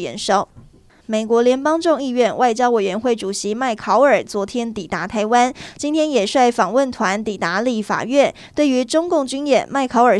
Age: 20-39